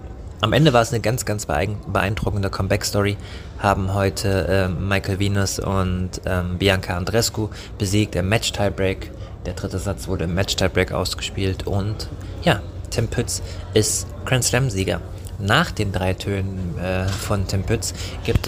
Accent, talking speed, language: German, 145 wpm, German